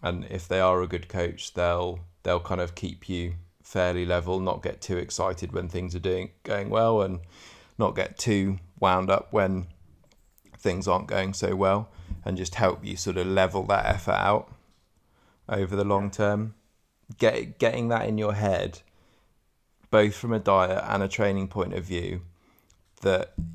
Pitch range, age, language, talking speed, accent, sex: 90-105 Hz, 20-39, English, 175 wpm, British, male